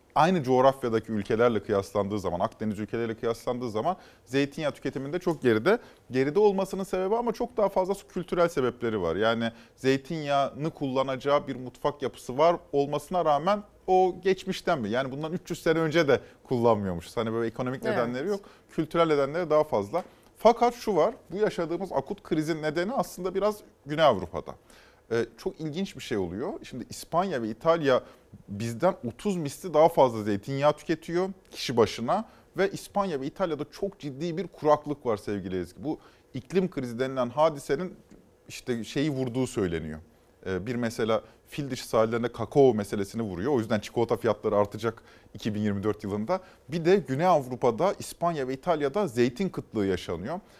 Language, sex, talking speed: Turkish, male, 150 wpm